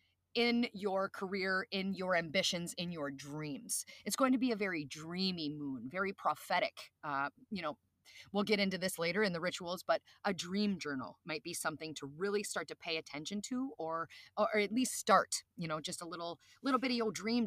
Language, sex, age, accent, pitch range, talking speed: English, female, 30-49, American, 155-210 Hz, 200 wpm